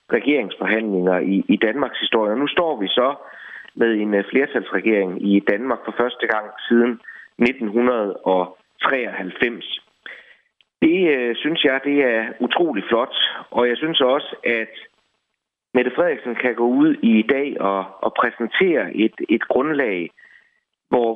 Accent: native